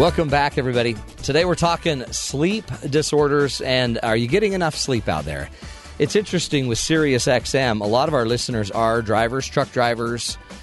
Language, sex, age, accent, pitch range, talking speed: English, male, 40-59, American, 105-145 Hz, 165 wpm